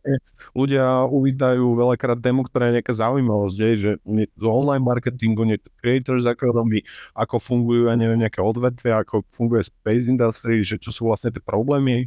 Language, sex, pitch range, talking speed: Slovak, male, 115-130 Hz, 160 wpm